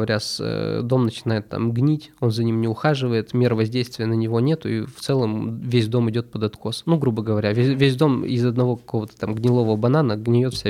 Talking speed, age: 210 wpm, 20-39